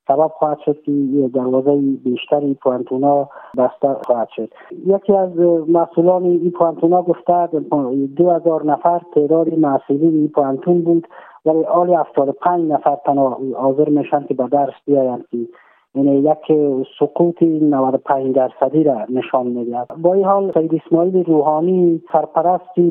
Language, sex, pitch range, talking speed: Persian, male, 145-170 Hz, 140 wpm